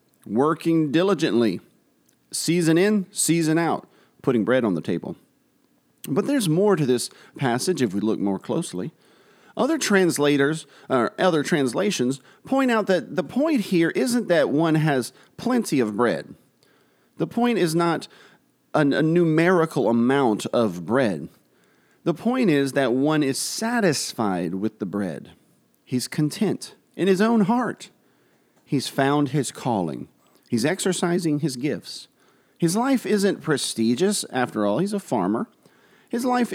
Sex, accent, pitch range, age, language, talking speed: male, American, 125-205 Hz, 40-59, English, 140 wpm